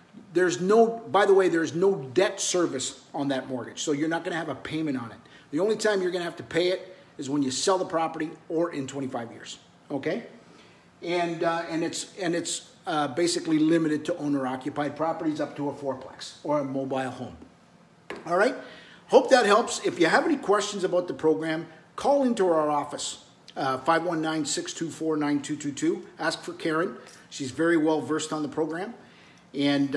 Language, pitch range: English, 135-170 Hz